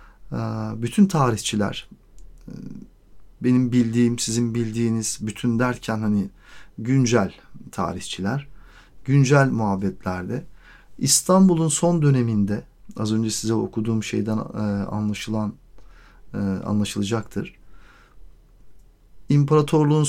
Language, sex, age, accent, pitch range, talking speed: Turkish, male, 50-69, native, 110-145 Hz, 70 wpm